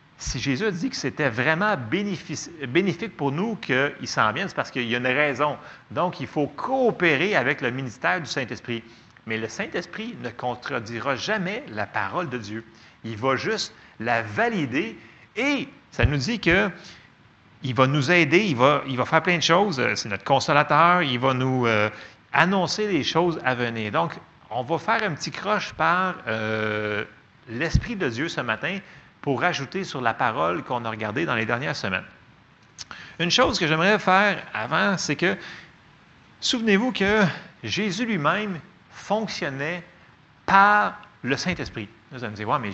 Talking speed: 165 wpm